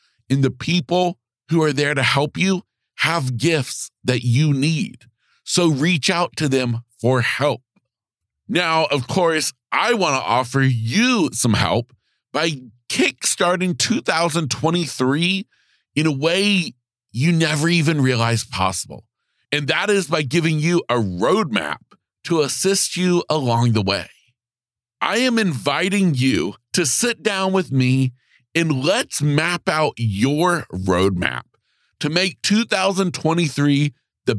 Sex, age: male, 40-59